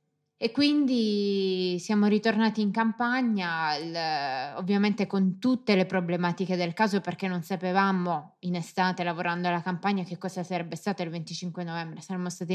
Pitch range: 175-205 Hz